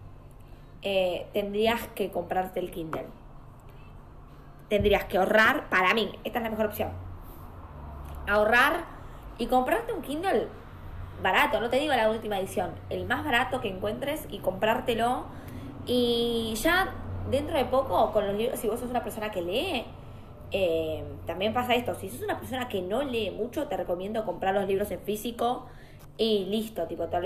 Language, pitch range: Spanish, 180-225 Hz